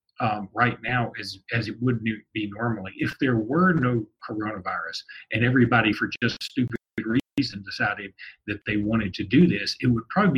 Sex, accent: male, American